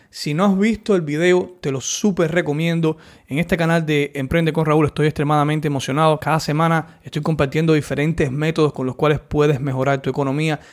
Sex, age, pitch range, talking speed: male, 20-39, 150-180 Hz, 185 wpm